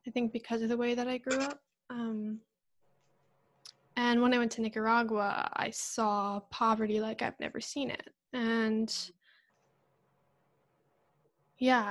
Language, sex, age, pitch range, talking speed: English, female, 10-29, 215-245 Hz, 135 wpm